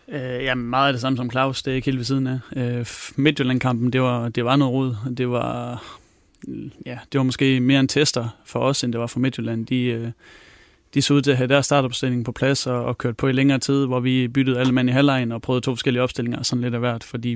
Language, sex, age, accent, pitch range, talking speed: Danish, male, 30-49, native, 120-135 Hz, 265 wpm